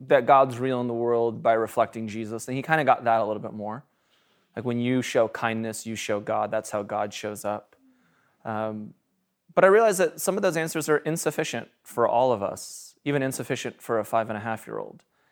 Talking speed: 225 wpm